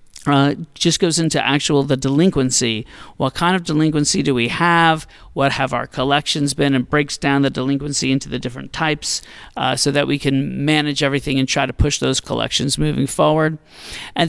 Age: 40-59